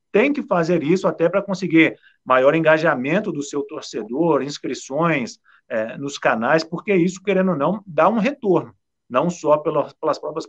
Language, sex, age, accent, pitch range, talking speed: Portuguese, male, 40-59, Brazilian, 140-175 Hz, 160 wpm